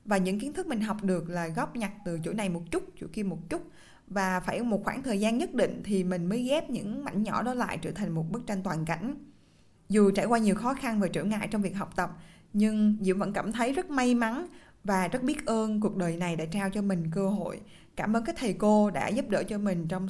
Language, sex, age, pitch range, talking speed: Vietnamese, female, 20-39, 180-230 Hz, 265 wpm